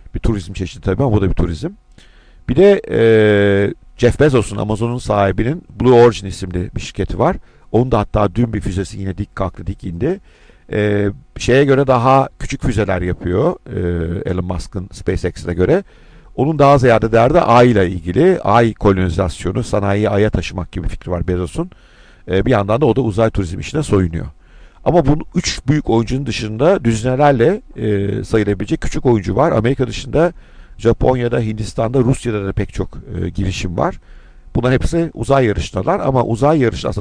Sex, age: male, 50-69